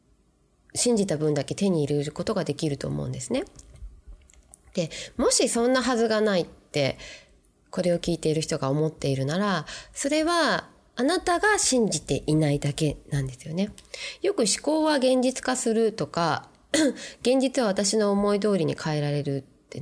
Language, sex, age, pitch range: Japanese, female, 20-39, 145-225 Hz